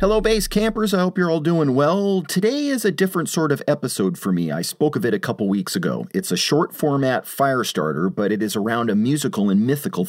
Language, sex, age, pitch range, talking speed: English, male, 40-59, 105-170 Hz, 230 wpm